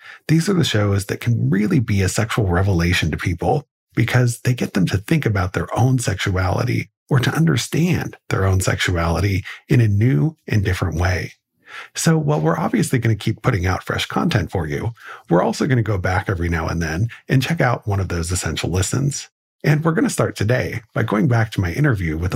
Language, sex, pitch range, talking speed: English, male, 95-130 Hz, 210 wpm